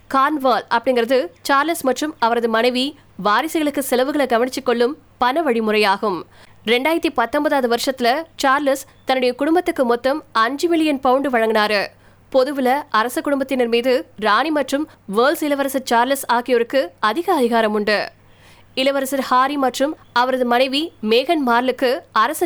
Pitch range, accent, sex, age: 235-280 Hz, native, female, 20-39